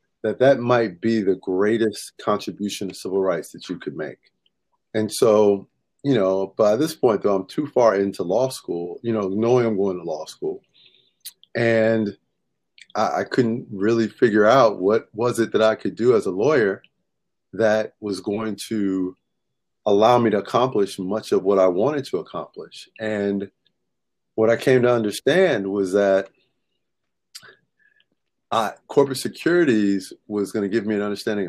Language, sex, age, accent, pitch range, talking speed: English, male, 30-49, American, 95-115 Hz, 160 wpm